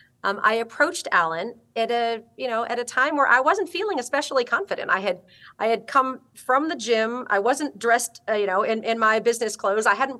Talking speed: 225 wpm